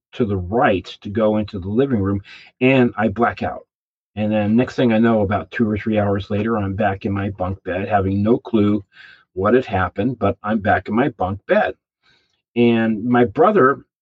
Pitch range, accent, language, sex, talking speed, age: 100-120 Hz, American, English, male, 200 wpm, 40-59